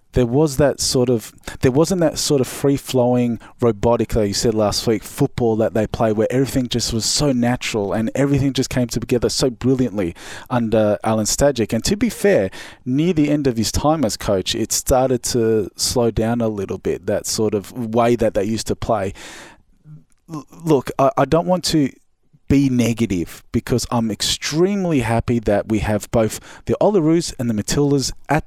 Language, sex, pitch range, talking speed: English, male, 110-135 Hz, 190 wpm